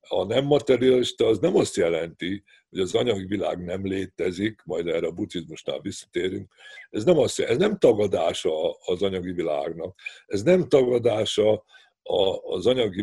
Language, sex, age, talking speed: Hungarian, male, 50-69, 140 wpm